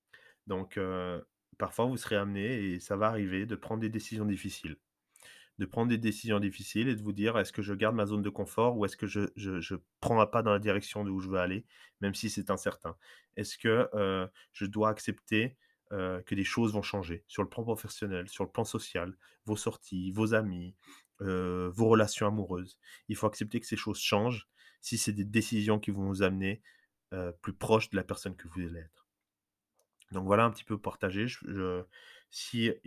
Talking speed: 205 wpm